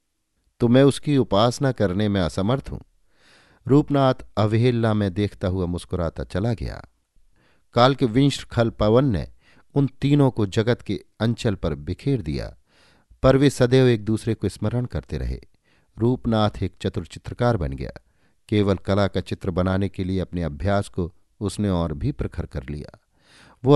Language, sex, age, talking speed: Hindi, male, 50-69, 155 wpm